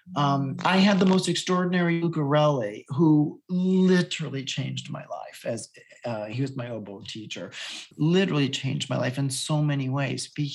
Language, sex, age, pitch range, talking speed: English, male, 40-59, 135-195 Hz, 160 wpm